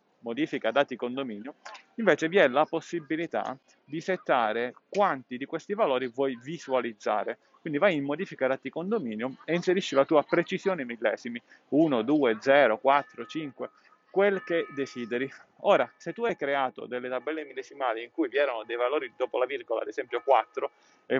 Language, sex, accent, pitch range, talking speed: Italian, male, native, 125-160 Hz, 160 wpm